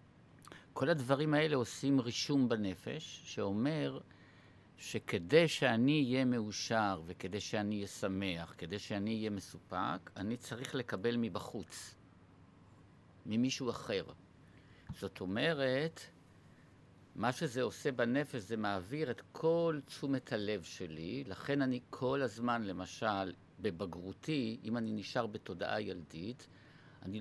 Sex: male